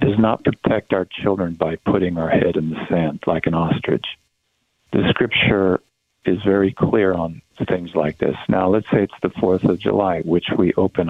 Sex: male